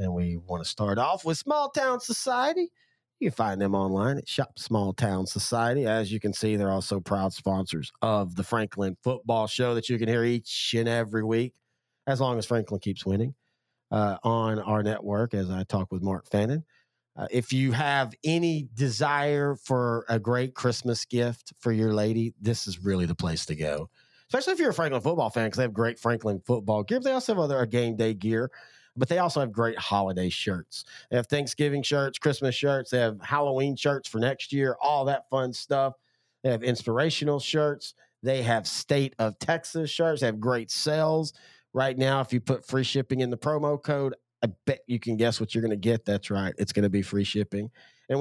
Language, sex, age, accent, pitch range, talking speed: English, male, 40-59, American, 110-135 Hz, 210 wpm